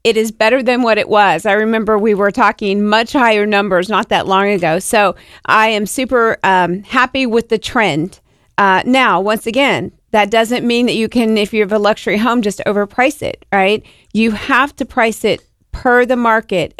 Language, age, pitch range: English, 40-59, 205-250 Hz